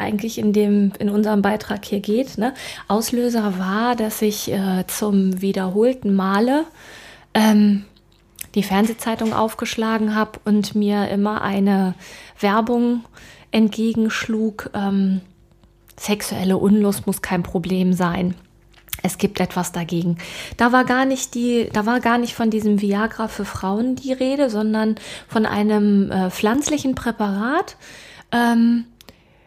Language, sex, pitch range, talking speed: German, female, 200-240 Hz, 125 wpm